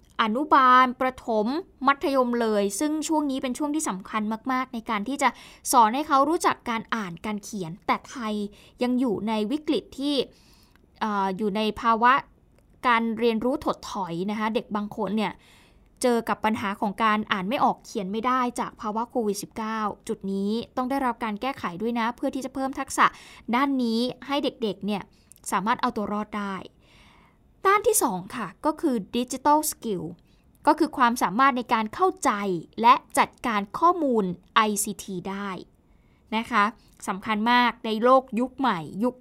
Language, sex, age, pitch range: Thai, female, 20-39, 215-270 Hz